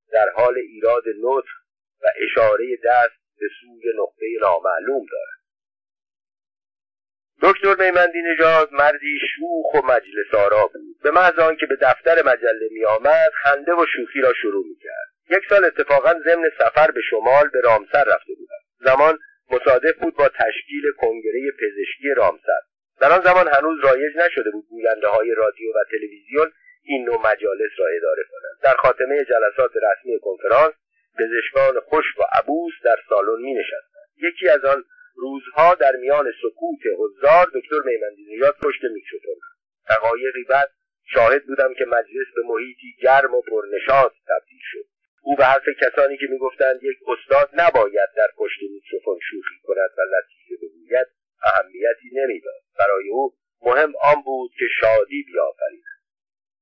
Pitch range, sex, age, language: 285-455 Hz, male, 50-69, Persian